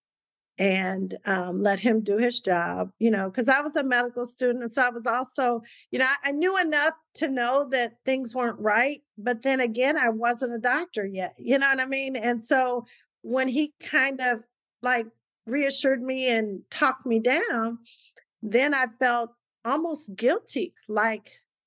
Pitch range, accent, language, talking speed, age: 205-250 Hz, American, English, 175 wpm, 40-59